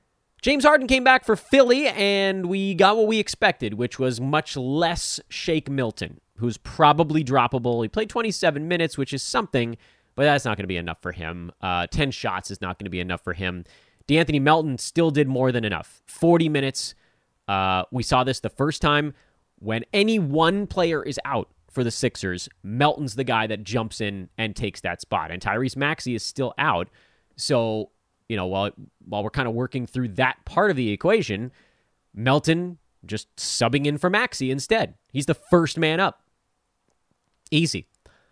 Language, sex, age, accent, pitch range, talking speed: English, male, 30-49, American, 115-175 Hz, 185 wpm